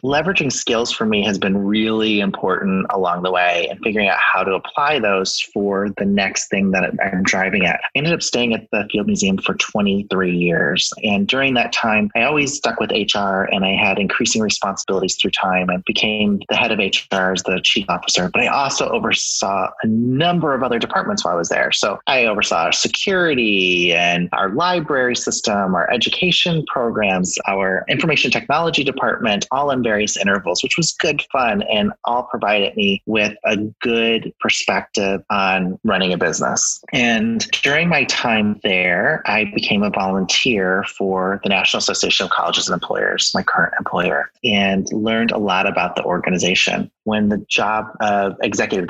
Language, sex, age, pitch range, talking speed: English, male, 30-49, 95-125 Hz, 180 wpm